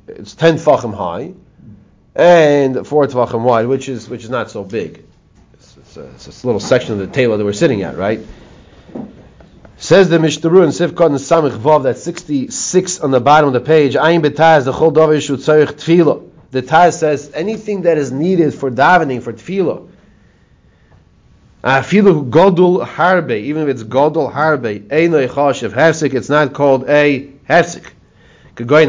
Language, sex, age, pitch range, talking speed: English, male, 30-49, 125-160 Hz, 155 wpm